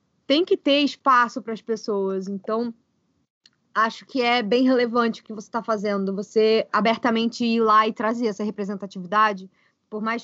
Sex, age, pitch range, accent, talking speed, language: female, 20-39, 205-240 Hz, Brazilian, 165 wpm, Portuguese